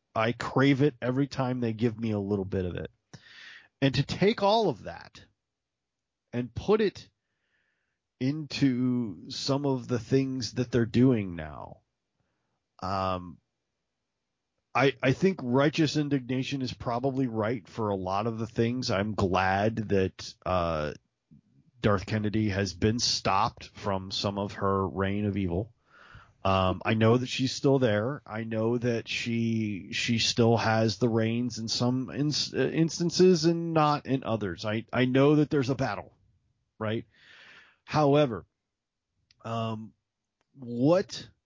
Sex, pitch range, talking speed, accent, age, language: male, 100-130 Hz, 140 wpm, American, 30-49, English